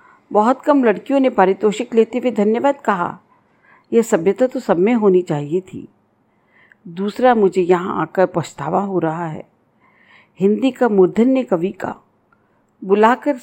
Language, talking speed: Hindi, 140 wpm